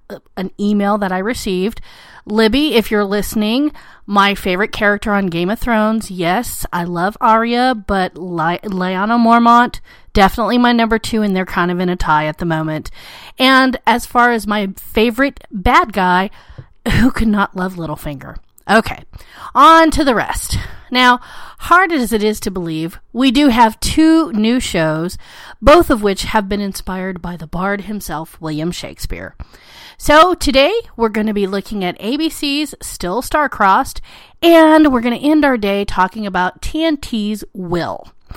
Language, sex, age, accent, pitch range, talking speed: English, female, 30-49, American, 190-250 Hz, 160 wpm